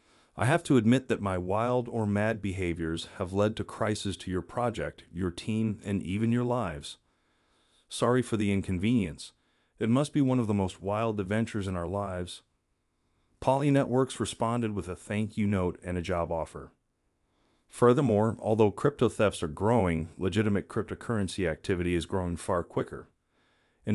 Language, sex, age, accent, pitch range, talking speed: English, male, 40-59, American, 90-120 Hz, 165 wpm